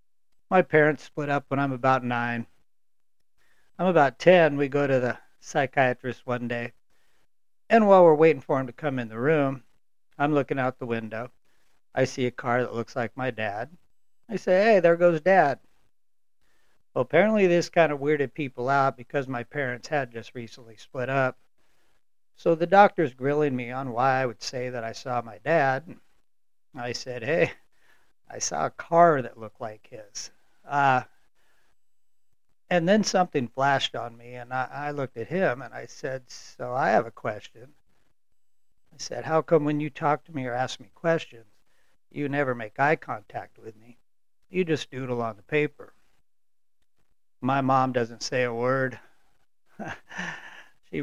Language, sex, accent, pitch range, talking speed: English, male, American, 120-150 Hz, 170 wpm